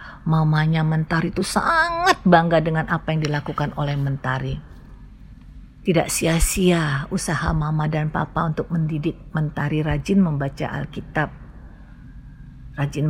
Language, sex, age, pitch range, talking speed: Indonesian, female, 50-69, 145-195 Hz, 110 wpm